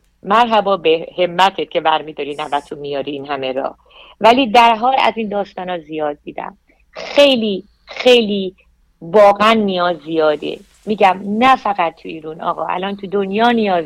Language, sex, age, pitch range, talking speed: Persian, female, 50-69, 165-200 Hz, 145 wpm